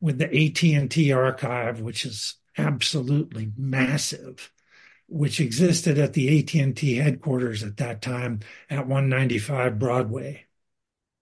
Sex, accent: male, American